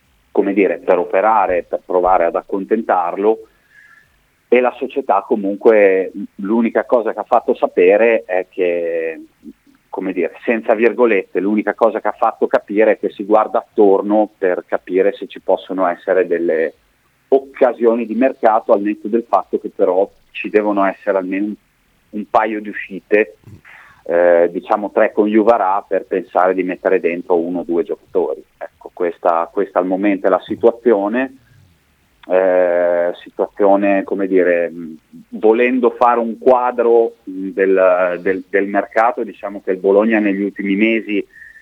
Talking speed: 140 wpm